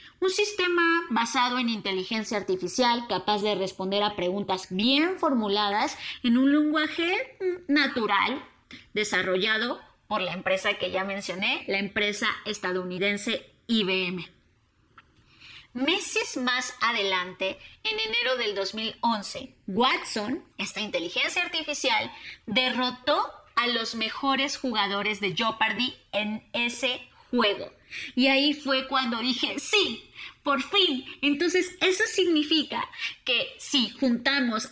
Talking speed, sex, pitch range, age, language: 110 wpm, female, 205-285 Hz, 30-49, Spanish